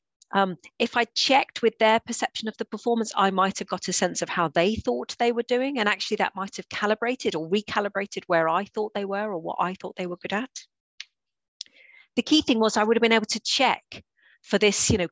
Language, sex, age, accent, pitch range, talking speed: English, female, 40-59, British, 160-220 Hz, 225 wpm